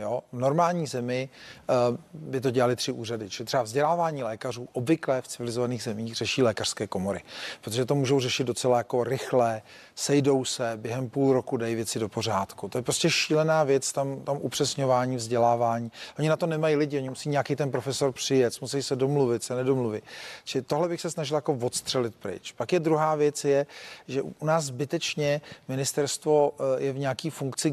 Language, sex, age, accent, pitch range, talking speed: Czech, male, 40-59, native, 130-150 Hz, 185 wpm